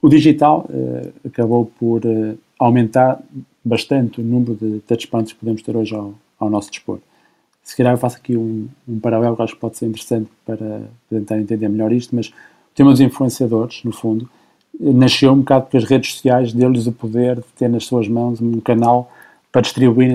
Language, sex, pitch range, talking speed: Portuguese, male, 110-130 Hz, 195 wpm